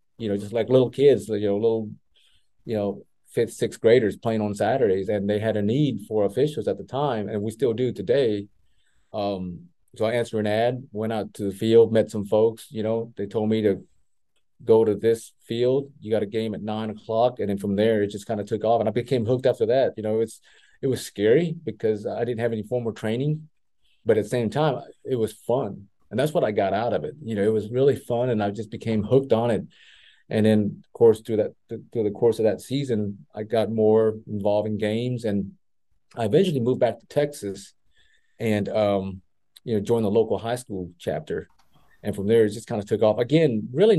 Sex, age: male, 30-49